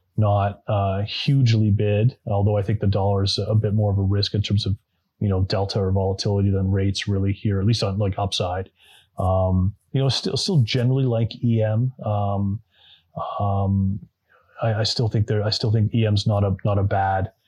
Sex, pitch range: male, 95-105 Hz